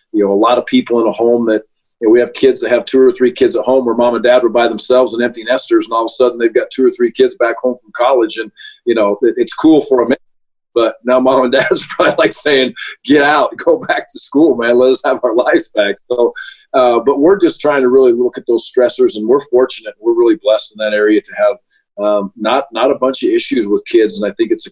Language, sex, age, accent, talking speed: English, male, 40-59, American, 270 wpm